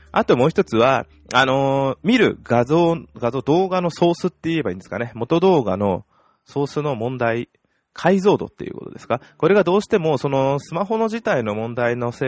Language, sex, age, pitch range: Japanese, male, 20-39, 95-155 Hz